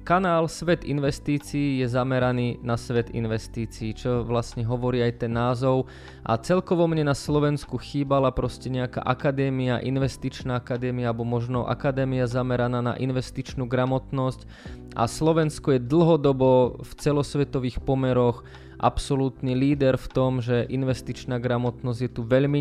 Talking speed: 130 wpm